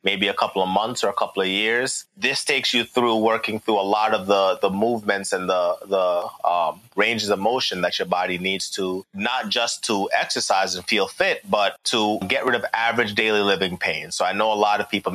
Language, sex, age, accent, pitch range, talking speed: English, male, 30-49, American, 95-110 Hz, 225 wpm